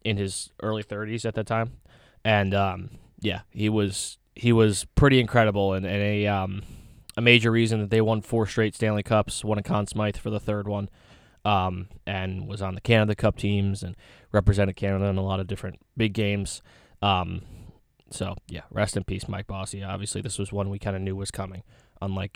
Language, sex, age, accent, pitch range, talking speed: English, male, 20-39, American, 100-115 Hz, 205 wpm